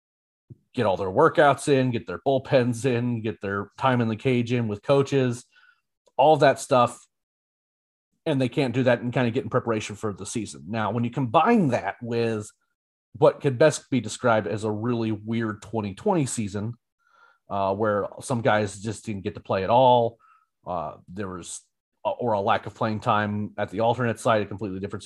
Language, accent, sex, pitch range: English, American, male, 105-130 Hz